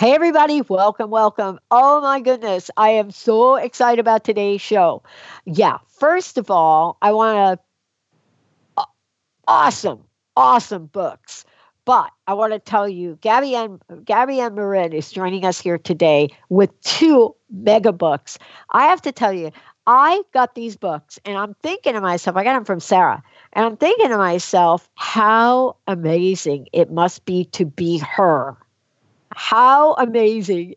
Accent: American